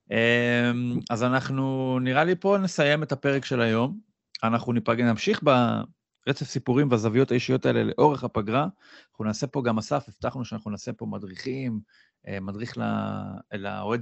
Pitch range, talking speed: 115-150 Hz, 135 wpm